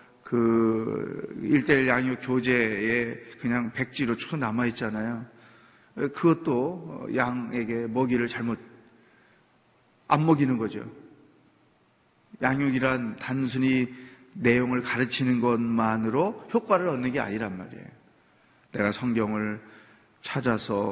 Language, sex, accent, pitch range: Korean, male, native, 115-155 Hz